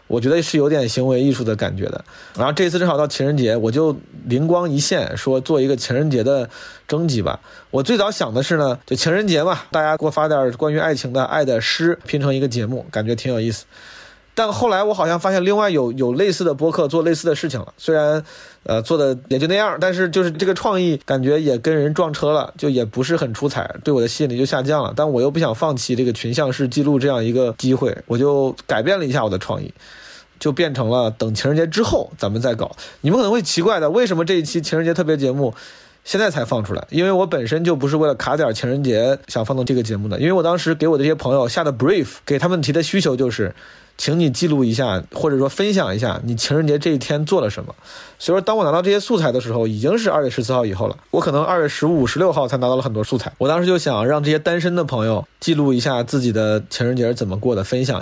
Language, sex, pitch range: Chinese, male, 125-165 Hz